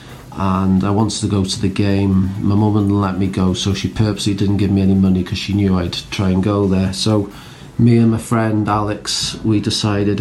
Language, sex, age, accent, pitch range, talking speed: English, male, 40-59, British, 95-115 Hz, 225 wpm